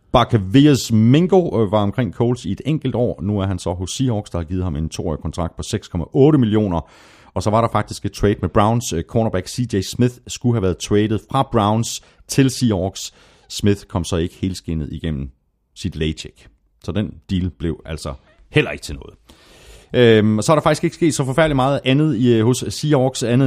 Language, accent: Danish, native